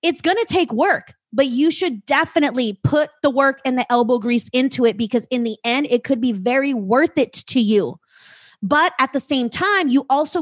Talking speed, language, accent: 215 wpm, English, American